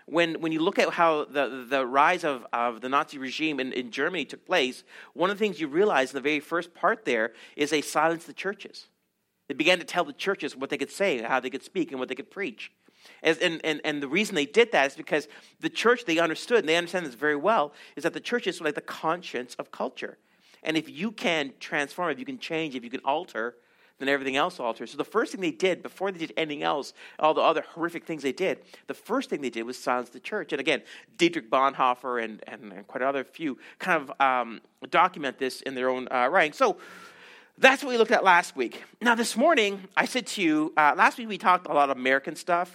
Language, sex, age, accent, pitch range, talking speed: English, male, 40-59, American, 135-180 Hz, 245 wpm